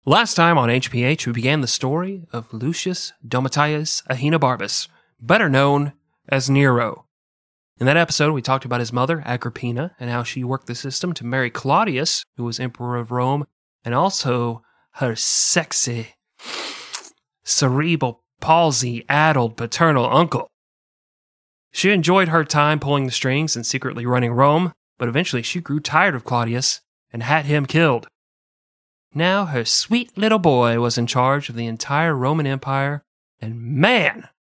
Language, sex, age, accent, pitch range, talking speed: English, male, 30-49, American, 120-160 Hz, 145 wpm